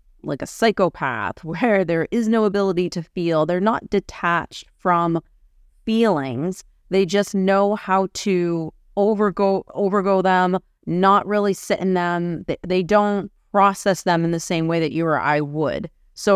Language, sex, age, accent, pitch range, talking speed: English, female, 30-49, American, 170-200 Hz, 160 wpm